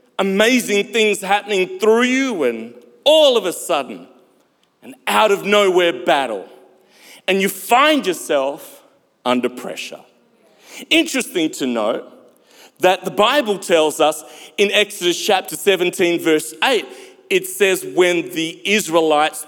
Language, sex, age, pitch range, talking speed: English, male, 40-59, 170-255 Hz, 125 wpm